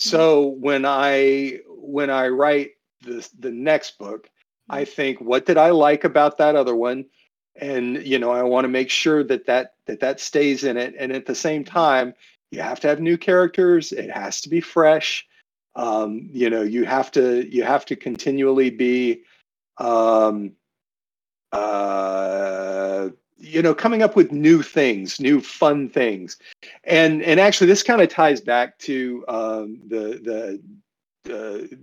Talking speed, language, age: 160 wpm, English, 40-59